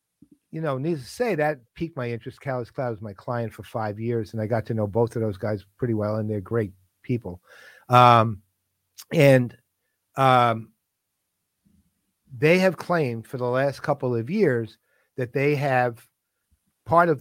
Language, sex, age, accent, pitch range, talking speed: English, male, 50-69, American, 115-145 Hz, 170 wpm